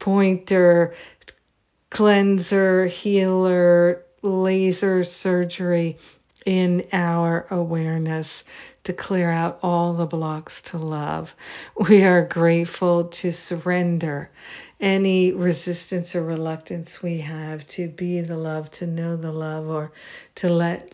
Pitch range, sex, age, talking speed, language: 160-180 Hz, female, 50-69, 110 wpm, English